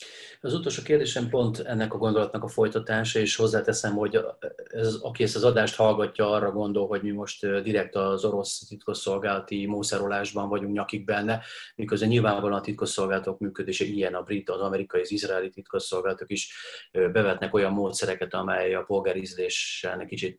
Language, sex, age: Hungarian, male, 30-49